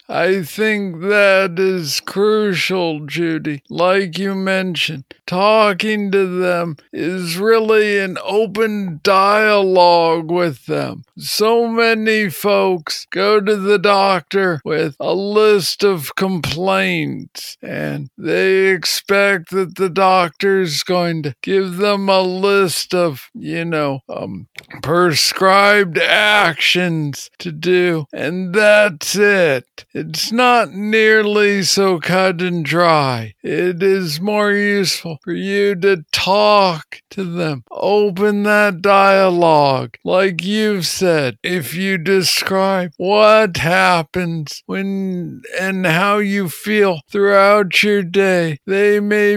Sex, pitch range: male, 170-200 Hz